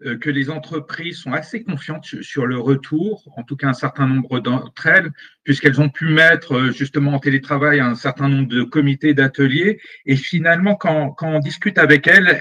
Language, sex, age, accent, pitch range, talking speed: French, male, 50-69, French, 140-180 Hz, 185 wpm